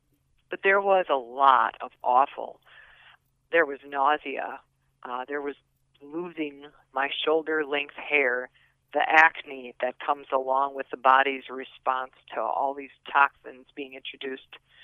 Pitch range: 135-165 Hz